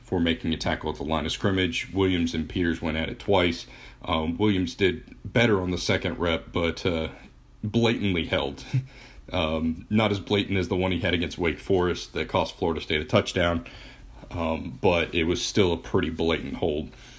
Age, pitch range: 40-59, 80-95 Hz